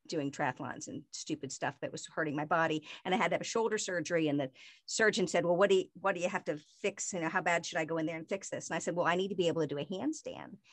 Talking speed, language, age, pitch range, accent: 320 wpm, English, 50-69, 170-220 Hz, American